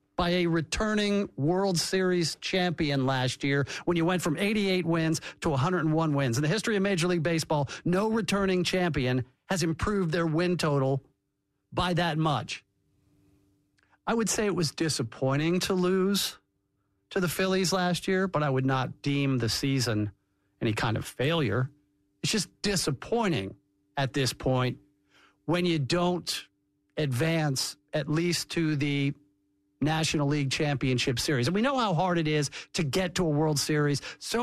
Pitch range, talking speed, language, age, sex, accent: 135-190 Hz, 160 wpm, English, 50-69, male, American